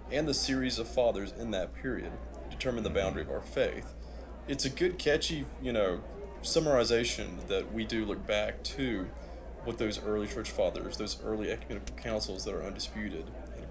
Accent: American